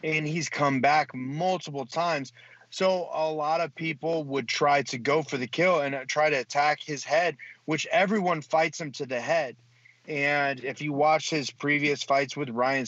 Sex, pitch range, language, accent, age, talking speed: male, 125-150 Hz, English, American, 30-49, 185 wpm